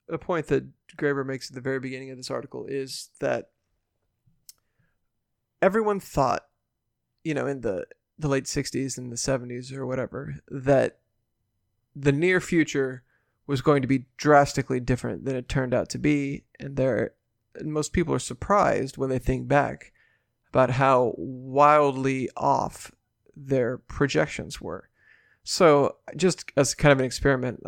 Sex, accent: male, American